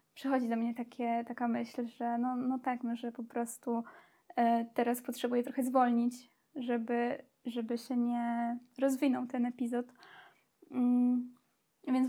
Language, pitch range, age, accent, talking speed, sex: Polish, 245-270 Hz, 20-39, native, 125 wpm, female